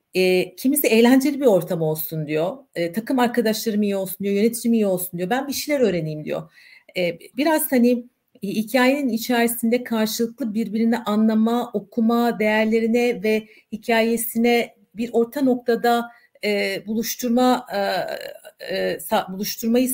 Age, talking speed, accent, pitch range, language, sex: 50-69, 110 wpm, native, 185-235 Hz, Turkish, female